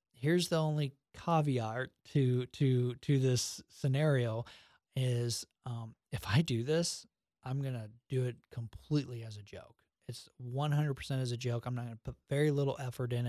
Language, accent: English, American